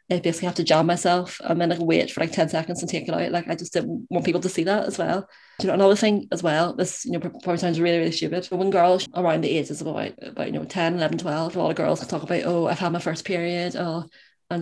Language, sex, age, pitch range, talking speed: English, female, 20-39, 170-190 Hz, 305 wpm